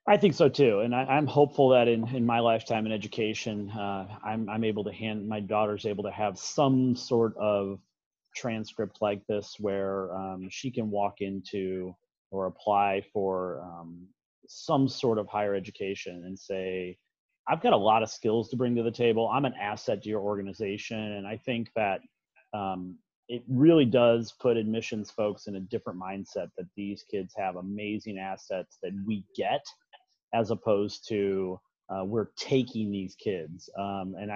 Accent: American